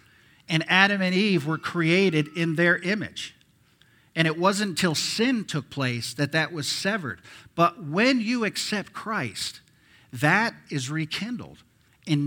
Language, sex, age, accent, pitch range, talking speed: English, male, 50-69, American, 125-170 Hz, 140 wpm